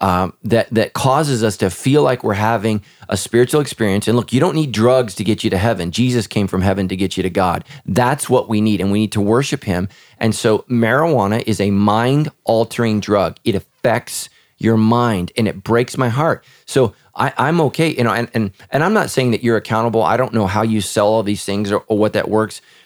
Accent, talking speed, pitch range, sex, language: American, 230 wpm, 105-125 Hz, male, English